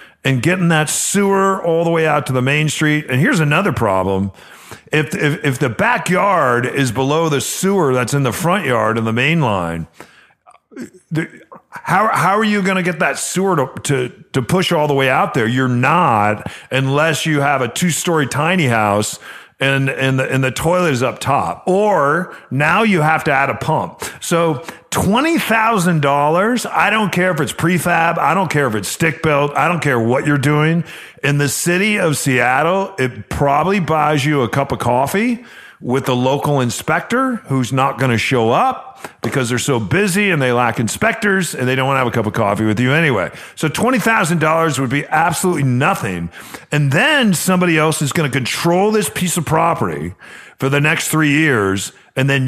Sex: male